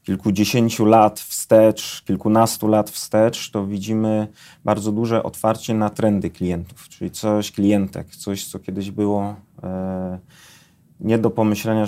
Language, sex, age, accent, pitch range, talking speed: Polish, male, 30-49, native, 105-115 Hz, 120 wpm